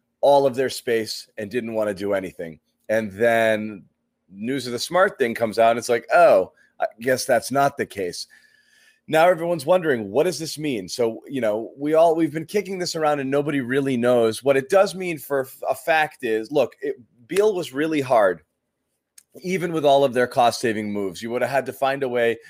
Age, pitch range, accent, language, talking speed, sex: 30-49, 115-155 Hz, American, English, 210 wpm, male